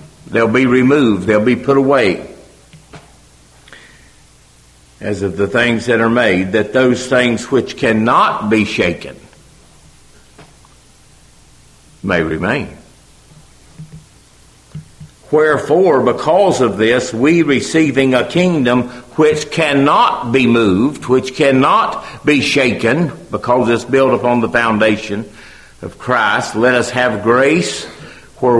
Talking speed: 110 wpm